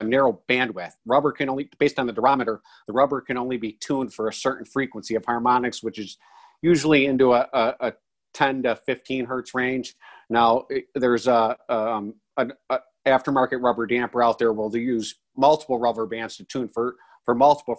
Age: 50-69